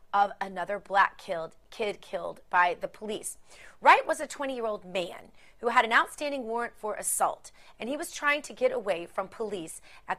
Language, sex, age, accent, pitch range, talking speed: English, female, 30-49, American, 185-245 Hz, 185 wpm